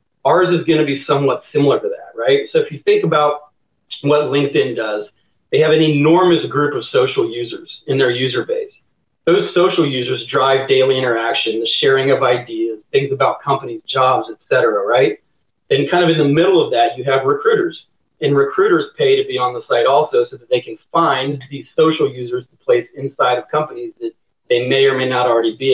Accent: American